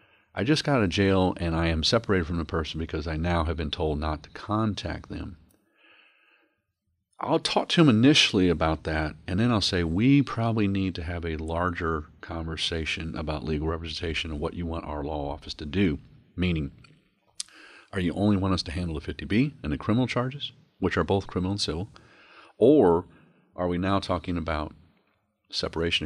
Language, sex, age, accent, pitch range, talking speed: English, male, 40-59, American, 80-95 Hz, 190 wpm